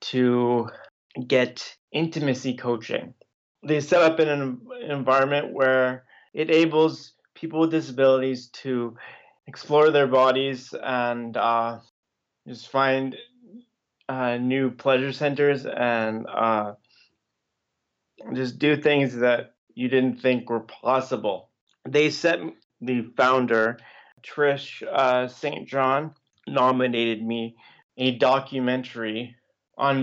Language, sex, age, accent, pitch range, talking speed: English, male, 30-49, American, 120-140 Hz, 105 wpm